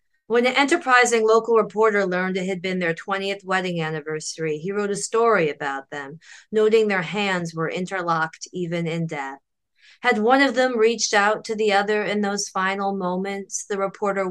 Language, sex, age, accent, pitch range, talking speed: English, female, 30-49, American, 170-210 Hz, 175 wpm